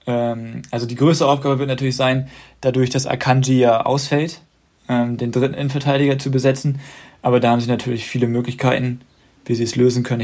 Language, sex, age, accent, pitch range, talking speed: German, male, 20-39, German, 115-130 Hz, 170 wpm